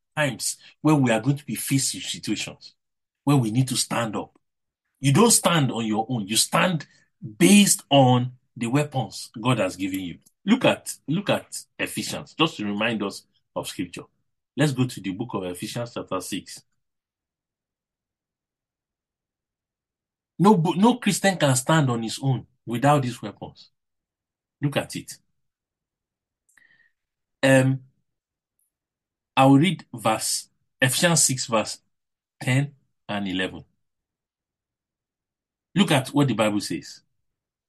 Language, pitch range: English, 115-170 Hz